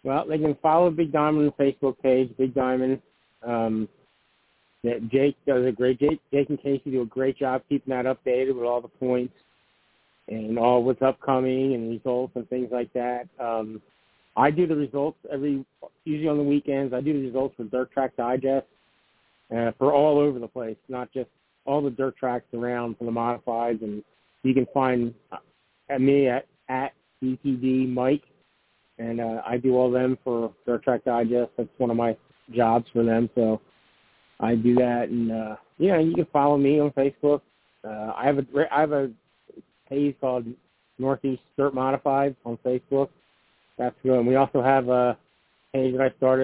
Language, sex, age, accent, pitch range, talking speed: English, male, 50-69, American, 120-140 Hz, 185 wpm